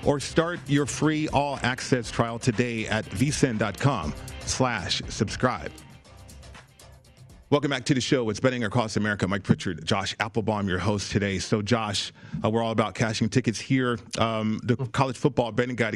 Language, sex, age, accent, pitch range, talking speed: English, male, 40-59, American, 110-135 Hz, 160 wpm